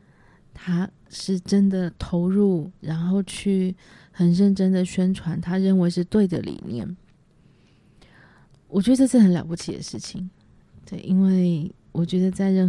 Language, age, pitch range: Chinese, 20-39, 170-190 Hz